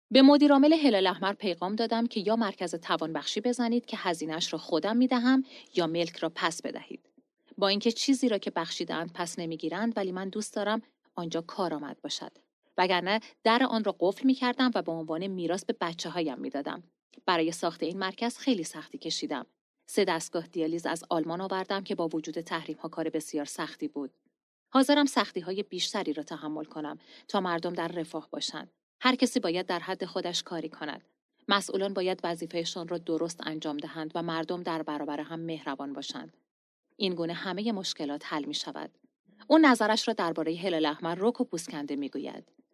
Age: 30-49